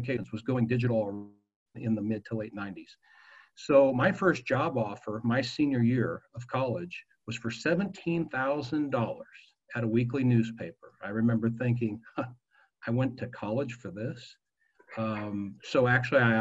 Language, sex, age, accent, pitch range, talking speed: English, male, 50-69, American, 110-135 Hz, 145 wpm